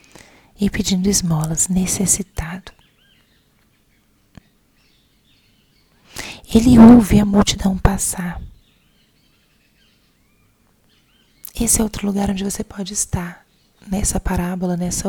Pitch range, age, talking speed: 185-215 Hz, 30-49, 80 wpm